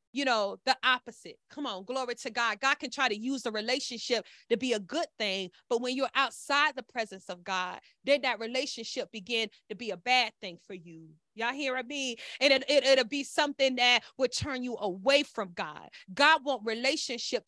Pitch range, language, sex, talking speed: 230-280 Hz, English, female, 195 wpm